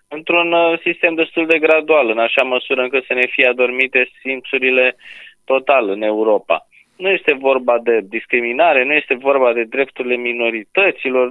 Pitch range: 120-165 Hz